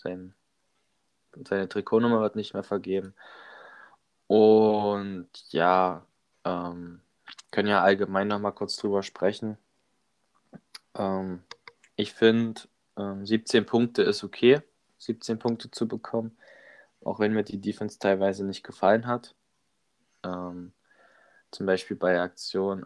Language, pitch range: German, 95-110 Hz